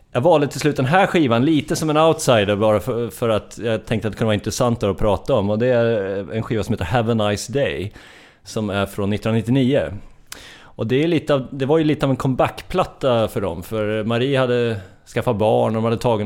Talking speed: 230 wpm